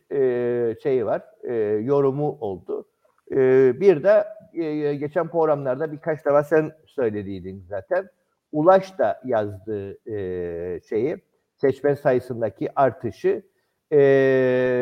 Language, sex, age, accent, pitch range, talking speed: Turkish, male, 50-69, native, 140-195 Hz, 105 wpm